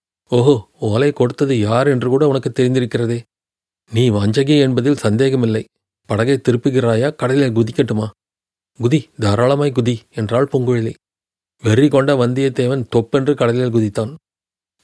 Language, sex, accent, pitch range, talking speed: Tamil, male, native, 115-140 Hz, 105 wpm